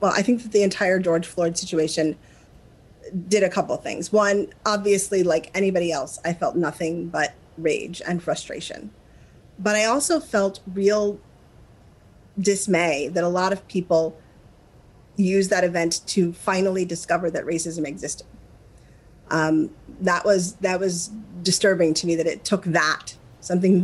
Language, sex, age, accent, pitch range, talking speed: English, female, 30-49, American, 165-195 Hz, 150 wpm